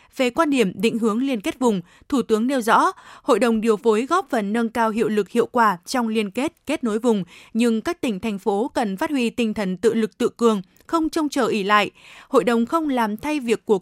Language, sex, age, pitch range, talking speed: Vietnamese, female, 20-39, 215-265 Hz, 245 wpm